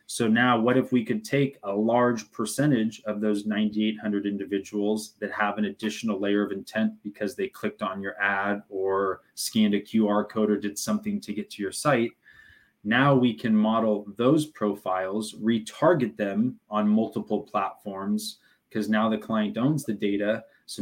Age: 20-39